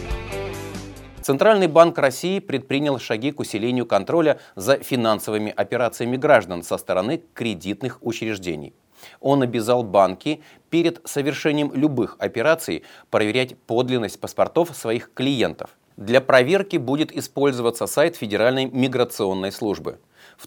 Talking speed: 110 wpm